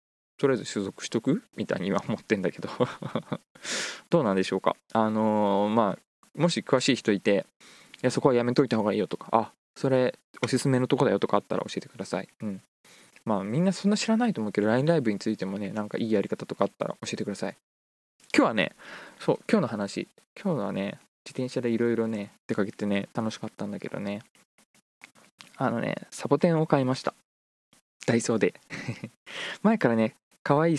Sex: male